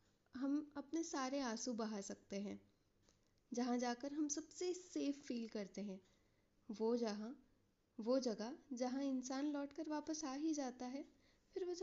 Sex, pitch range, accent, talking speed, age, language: female, 235-305 Hz, native, 150 wpm, 10-29, Hindi